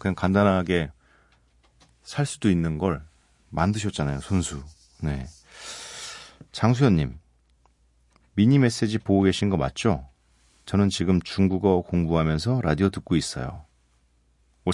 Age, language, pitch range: 40-59, Korean, 75-105 Hz